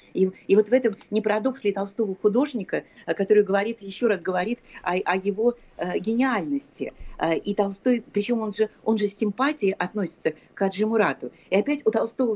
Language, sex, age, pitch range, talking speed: Russian, female, 40-59, 180-225 Hz, 170 wpm